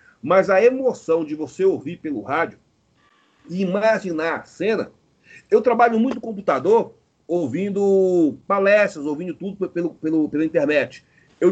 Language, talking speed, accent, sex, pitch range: Portuguese, 140 wpm, Brazilian, male, 150-200 Hz